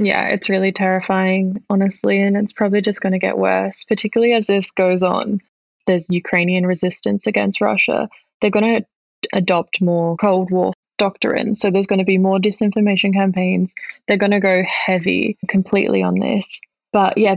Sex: female